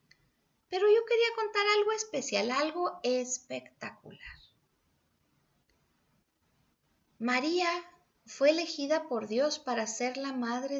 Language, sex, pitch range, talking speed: Spanish, female, 215-295 Hz, 95 wpm